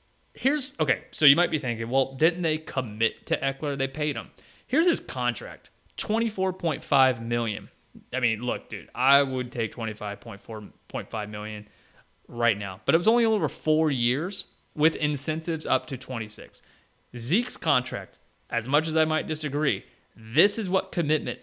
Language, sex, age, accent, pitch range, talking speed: English, male, 30-49, American, 110-150 Hz, 170 wpm